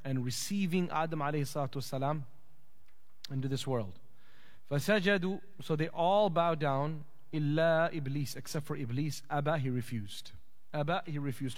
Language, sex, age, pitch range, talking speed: English, male, 30-49, 140-185 Hz, 125 wpm